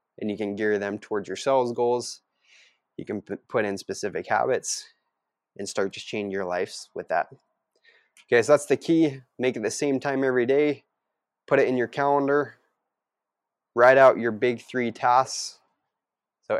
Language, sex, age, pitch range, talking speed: English, male, 20-39, 115-135 Hz, 170 wpm